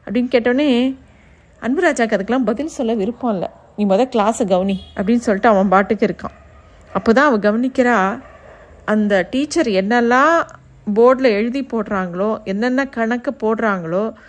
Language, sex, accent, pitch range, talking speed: Tamil, female, native, 205-250 Hz, 130 wpm